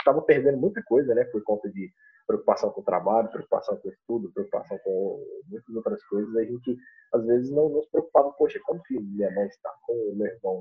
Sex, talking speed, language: male, 210 wpm, Portuguese